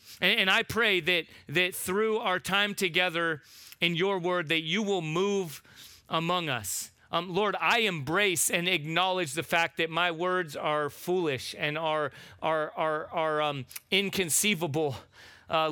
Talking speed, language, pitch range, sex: 150 wpm, English, 135-185 Hz, male